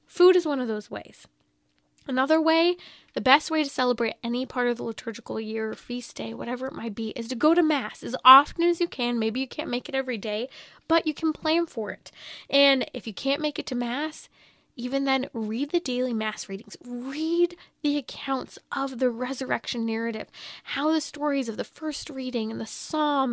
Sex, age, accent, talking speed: female, 10-29, American, 210 wpm